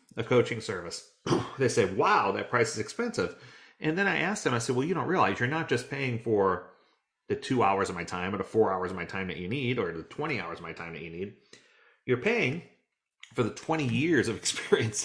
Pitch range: 100-145 Hz